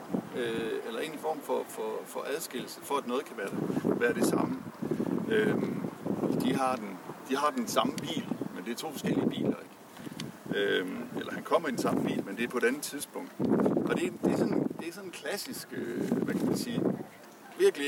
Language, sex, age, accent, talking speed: Danish, male, 60-79, native, 205 wpm